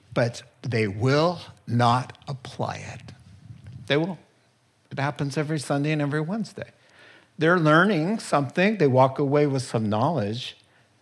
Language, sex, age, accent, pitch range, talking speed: English, male, 50-69, American, 130-160 Hz, 130 wpm